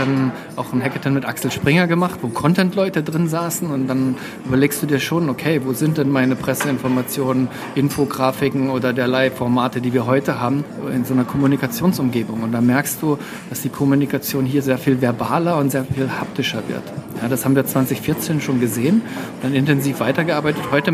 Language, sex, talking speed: German, male, 180 wpm